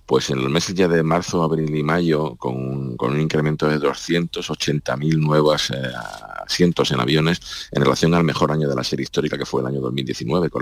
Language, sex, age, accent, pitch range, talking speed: Spanish, male, 50-69, Spanish, 65-80 Hz, 205 wpm